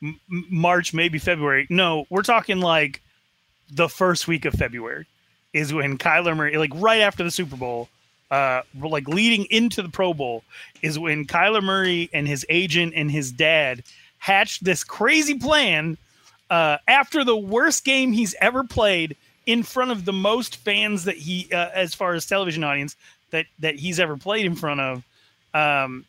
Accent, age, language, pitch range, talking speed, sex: American, 30-49, English, 140-190 Hz, 170 wpm, male